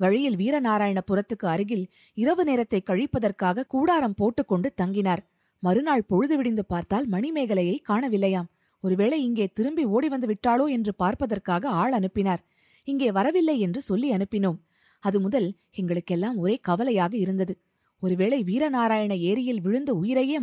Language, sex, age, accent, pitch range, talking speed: Tamil, female, 20-39, native, 185-245 Hz, 120 wpm